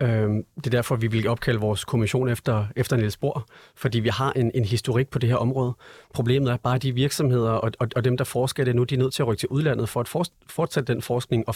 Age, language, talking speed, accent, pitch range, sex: 30-49, Danish, 255 wpm, native, 110-130 Hz, male